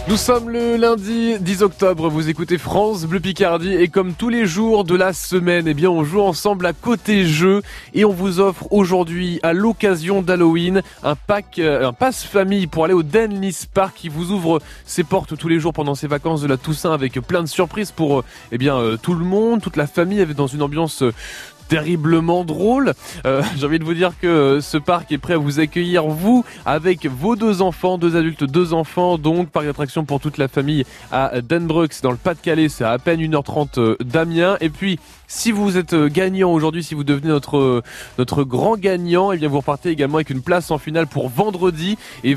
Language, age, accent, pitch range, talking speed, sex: French, 20-39, French, 150-190 Hz, 210 wpm, male